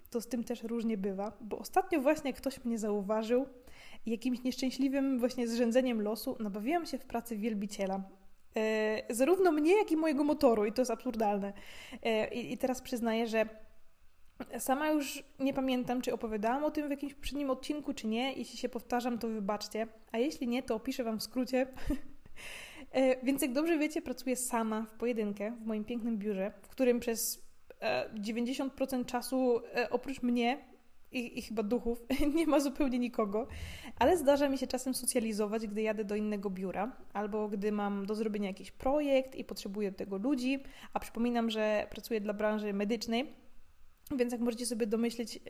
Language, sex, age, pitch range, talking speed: Polish, female, 20-39, 220-260 Hz, 170 wpm